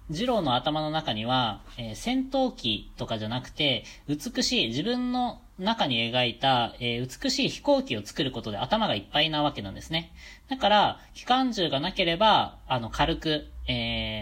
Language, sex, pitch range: Japanese, female, 110-175 Hz